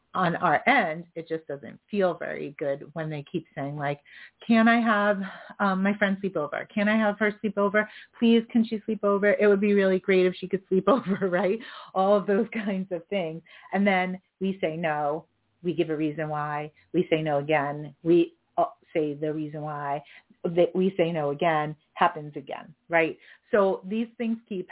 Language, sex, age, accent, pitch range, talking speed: English, female, 30-49, American, 155-205 Hz, 195 wpm